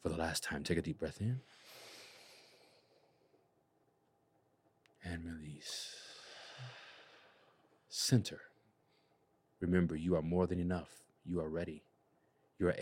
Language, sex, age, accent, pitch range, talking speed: English, male, 40-59, American, 85-105 Hz, 105 wpm